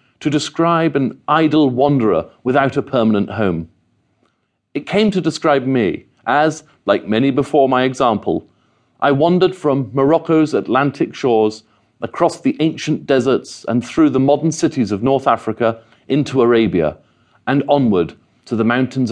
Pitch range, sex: 110-160 Hz, male